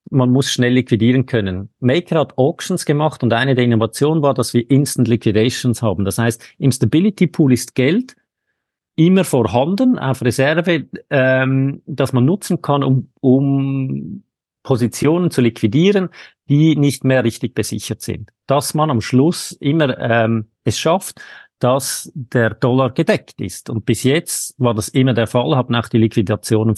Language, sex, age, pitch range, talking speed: German, male, 50-69, 115-150 Hz, 160 wpm